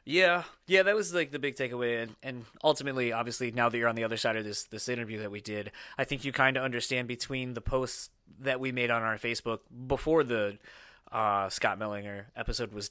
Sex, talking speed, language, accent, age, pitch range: male, 225 wpm, English, American, 20-39, 110-135 Hz